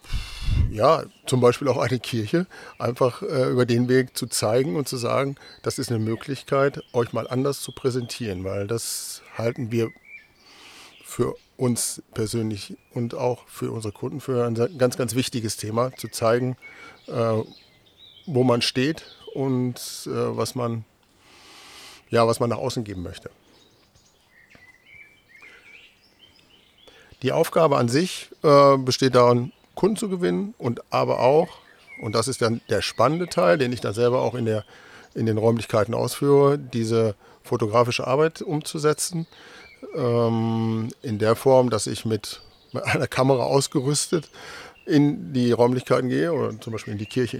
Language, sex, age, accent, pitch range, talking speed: German, male, 50-69, German, 115-135 Hz, 140 wpm